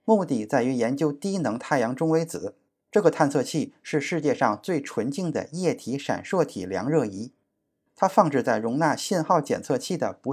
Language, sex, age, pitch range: Chinese, male, 20-39, 130-180 Hz